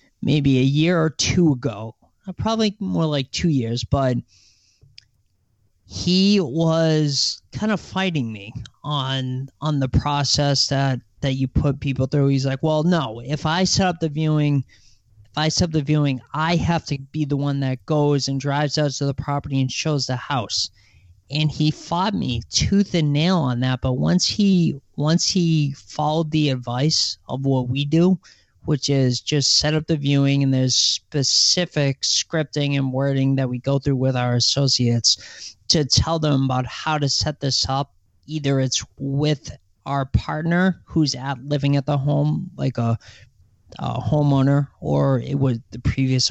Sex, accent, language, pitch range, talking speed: male, American, English, 125-150 Hz, 170 wpm